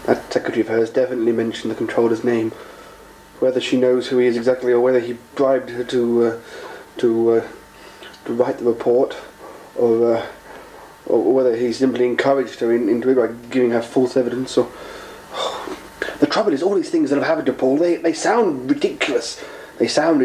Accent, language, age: British, English, 30-49